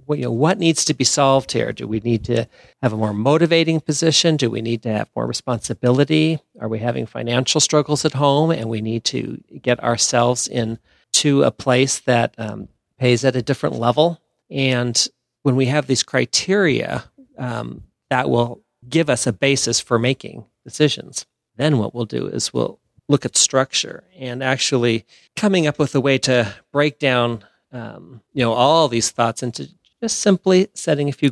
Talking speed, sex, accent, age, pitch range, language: 185 wpm, male, American, 40-59, 115-150 Hz, English